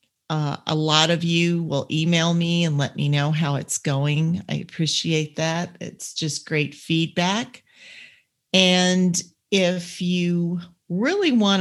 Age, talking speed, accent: 40-59, 140 wpm, American